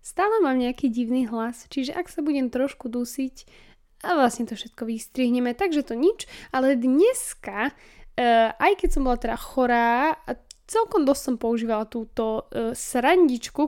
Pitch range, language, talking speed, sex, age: 235-295 Hz, Slovak, 145 wpm, female, 10-29